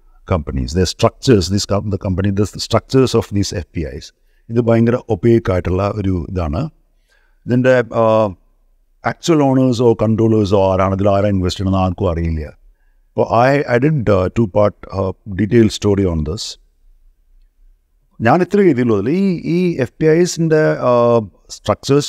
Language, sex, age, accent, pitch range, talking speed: Malayalam, male, 50-69, native, 85-130 Hz, 145 wpm